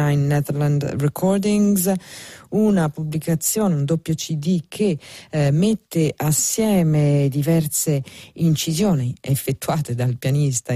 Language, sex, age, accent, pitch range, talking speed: Italian, female, 40-59, native, 135-165 Hz, 85 wpm